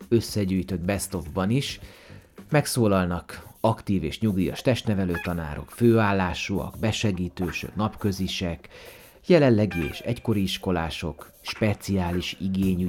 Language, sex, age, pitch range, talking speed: Hungarian, male, 30-49, 85-105 Hz, 85 wpm